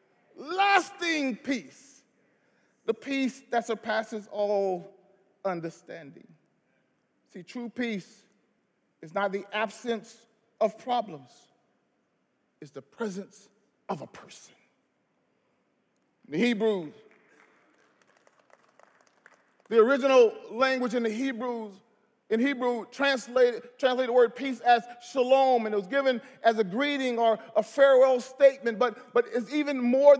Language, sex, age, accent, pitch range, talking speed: English, male, 40-59, American, 225-275 Hz, 115 wpm